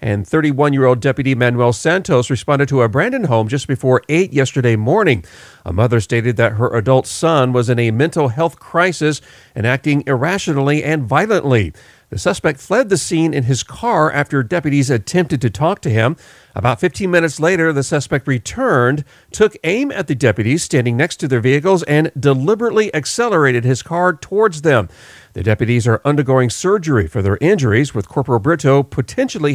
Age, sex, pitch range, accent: 40-59, male, 120-160 Hz, American